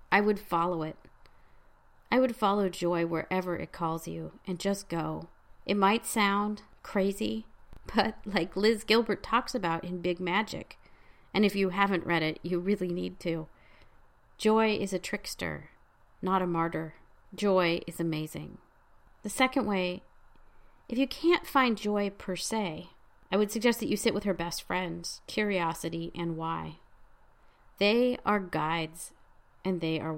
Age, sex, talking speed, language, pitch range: 40-59, female, 155 wpm, English, 170-210 Hz